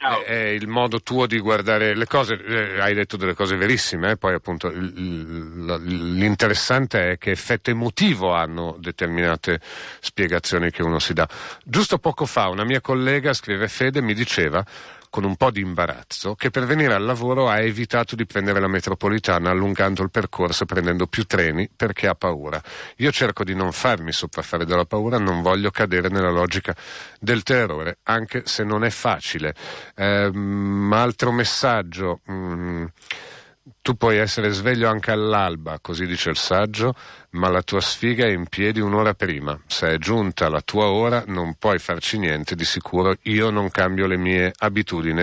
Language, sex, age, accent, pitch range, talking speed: Italian, male, 40-59, native, 85-110 Hz, 165 wpm